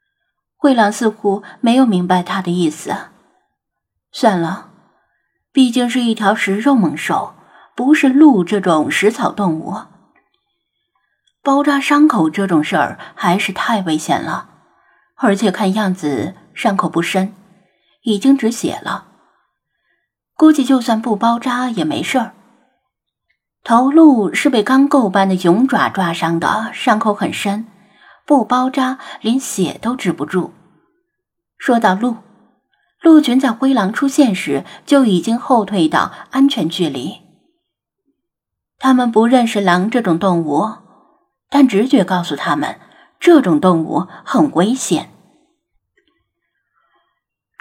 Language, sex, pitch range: Chinese, female, 190-275 Hz